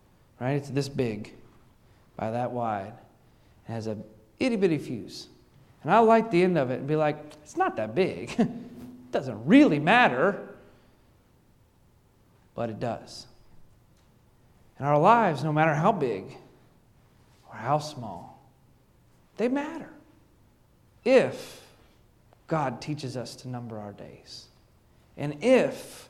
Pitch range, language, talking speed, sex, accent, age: 125-170 Hz, English, 125 wpm, male, American, 40-59